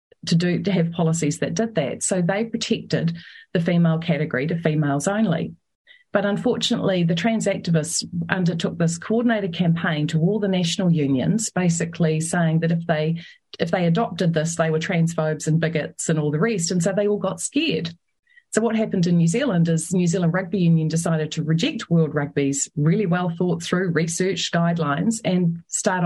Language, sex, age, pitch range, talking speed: English, female, 30-49, 160-200 Hz, 185 wpm